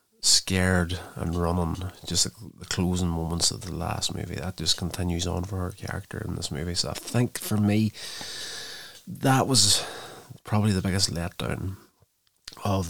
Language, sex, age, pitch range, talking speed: English, male, 30-49, 85-100 Hz, 160 wpm